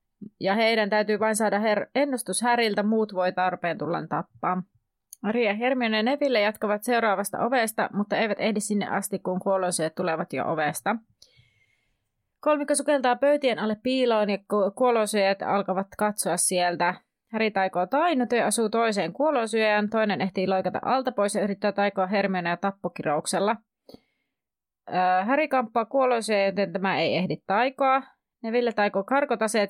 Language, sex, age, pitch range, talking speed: Finnish, female, 30-49, 180-235 Hz, 140 wpm